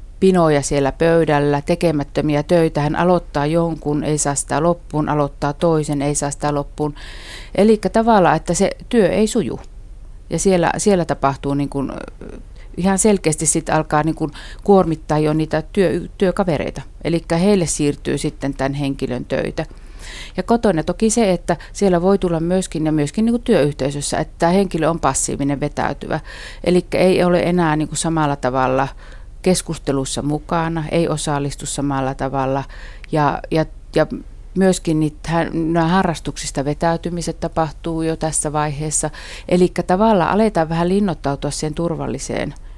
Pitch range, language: 145-175 Hz, Finnish